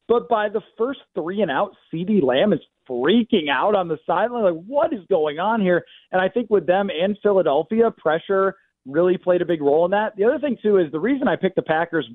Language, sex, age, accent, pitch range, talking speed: English, male, 30-49, American, 165-215 Hz, 230 wpm